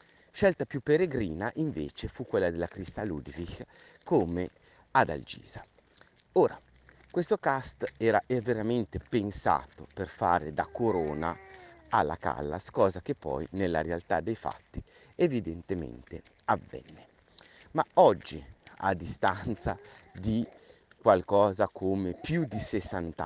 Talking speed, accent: 110 wpm, native